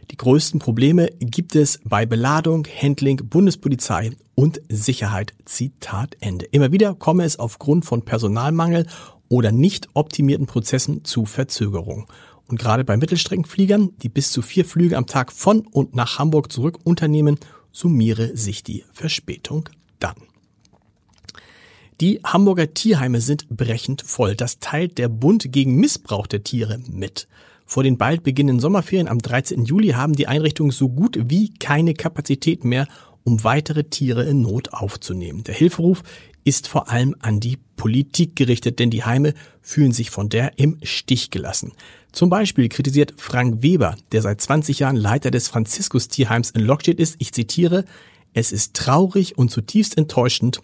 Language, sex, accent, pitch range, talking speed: German, male, German, 115-155 Hz, 150 wpm